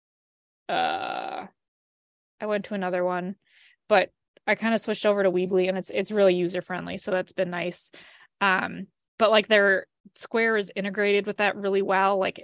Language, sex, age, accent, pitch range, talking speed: English, female, 20-39, American, 190-215 Hz, 170 wpm